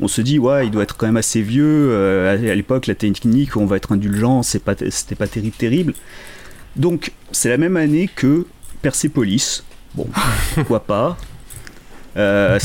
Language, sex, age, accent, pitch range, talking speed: French, male, 30-49, French, 110-140 Hz, 175 wpm